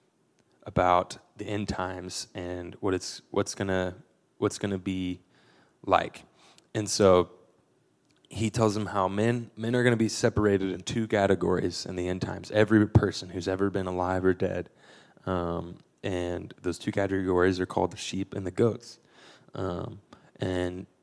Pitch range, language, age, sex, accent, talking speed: 90-110 Hz, English, 20-39, male, American, 165 wpm